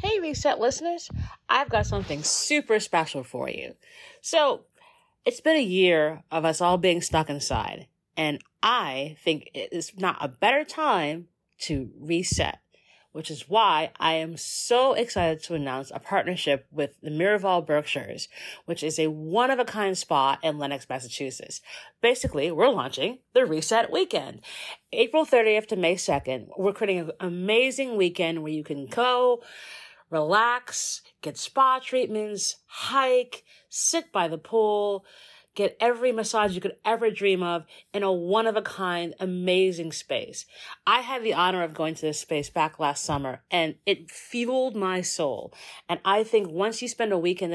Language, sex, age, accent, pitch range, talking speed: English, female, 40-59, American, 160-225 Hz, 160 wpm